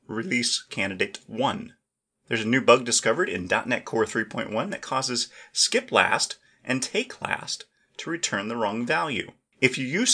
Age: 30-49